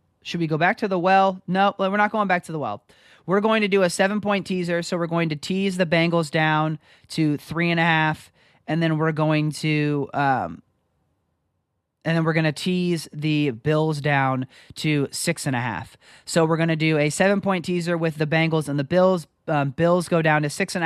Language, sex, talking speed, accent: English, male, 220 wpm, American